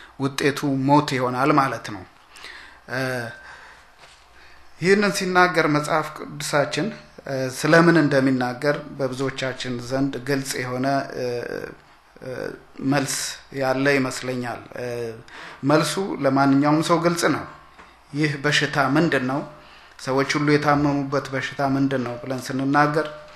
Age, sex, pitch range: 30-49, male, 130-145 Hz